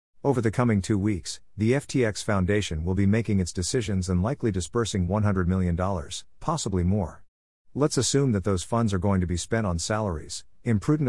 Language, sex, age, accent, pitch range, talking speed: English, male, 50-69, American, 90-115 Hz, 180 wpm